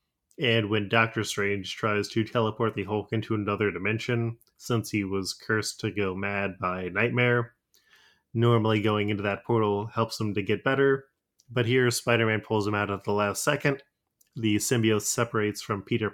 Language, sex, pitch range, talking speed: English, male, 105-120 Hz, 170 wpm